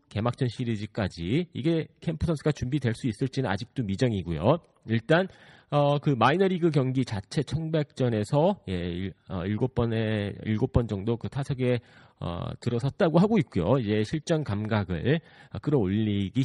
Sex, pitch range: male, 105-145 Hz